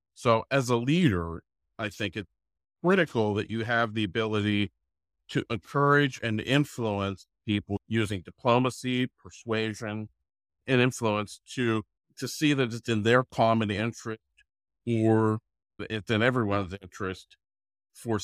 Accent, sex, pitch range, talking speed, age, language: American, male, 95-115 Hz, 125 wpm, 50-69, English